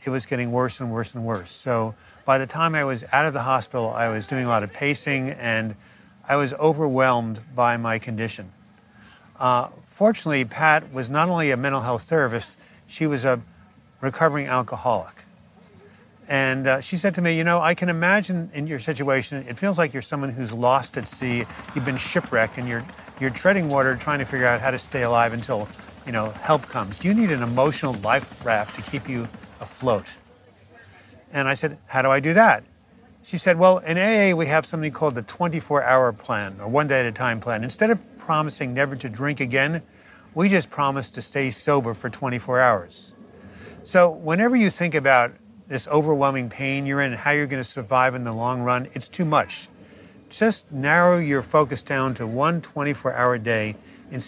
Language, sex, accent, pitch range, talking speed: English, male, American, 120-155 Hz, 200 wpm